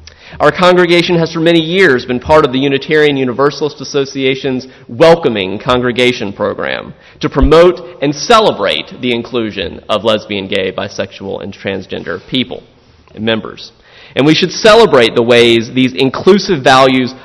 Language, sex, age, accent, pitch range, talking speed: English, male, 30-49, American, 115-160 Hz, 140 wpm